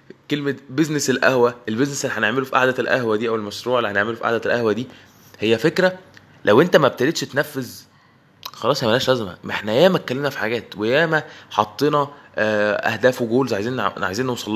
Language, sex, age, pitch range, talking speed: Arabic, male, 20-39, 110-145 Hz, 175 wpm